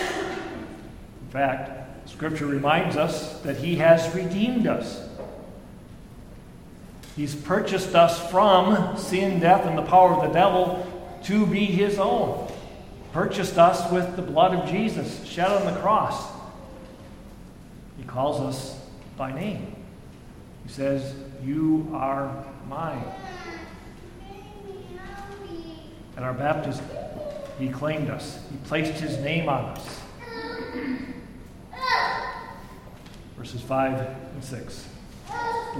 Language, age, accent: English, 50-69, American